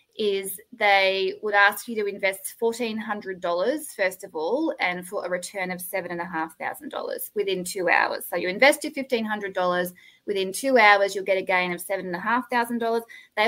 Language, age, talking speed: English, 20-39, 155 wpm